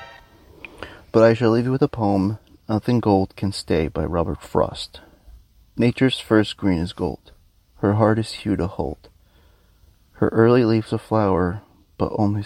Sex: male